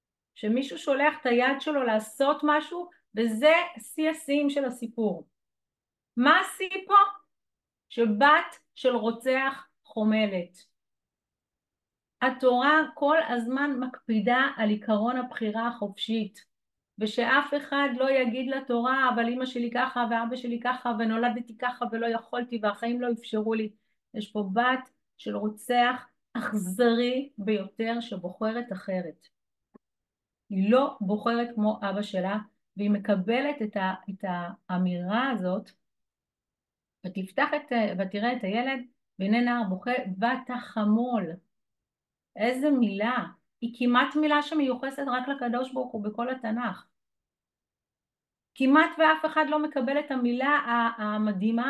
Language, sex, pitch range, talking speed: Hebrew, female, 215-270 Hz, 115 wpm